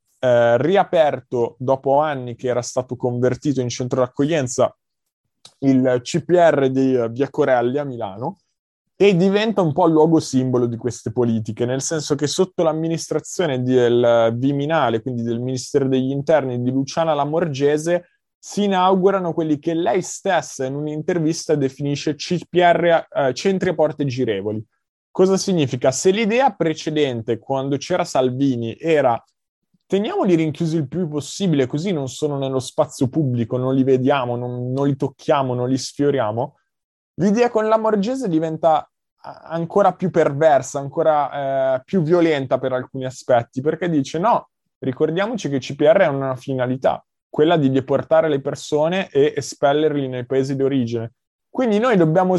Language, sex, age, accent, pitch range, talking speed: Italian, male, 20-39, native, 130-165 Hz, 145 wpm